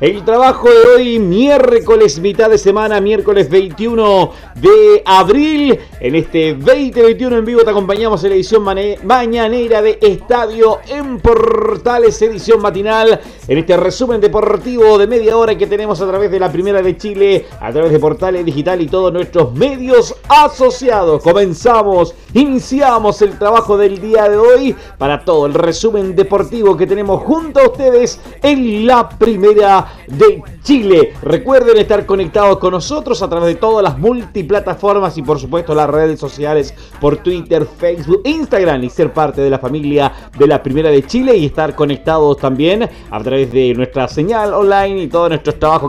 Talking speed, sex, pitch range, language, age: 165 wpm, male, 160-225 Hz, Spanish, 40-59